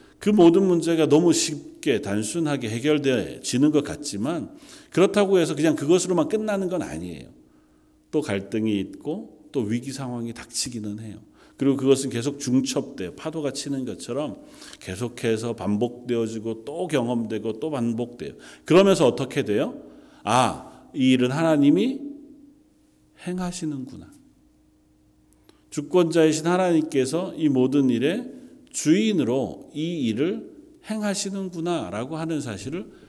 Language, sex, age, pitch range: Korean, male, 40-59, 115-170 Hz